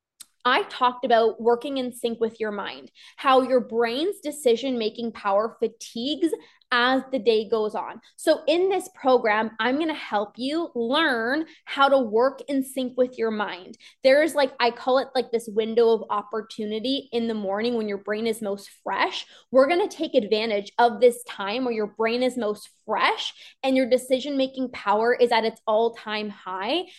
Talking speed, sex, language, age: 180 wpm, female, English, 20-39